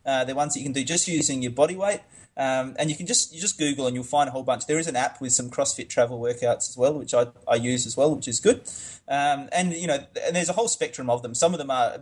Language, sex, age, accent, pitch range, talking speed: English, male, 20-39, Australian, 125-160 Hz, 310 wpm